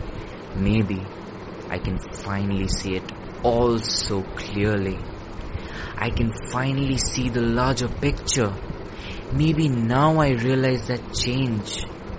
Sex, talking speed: male, 110 wpm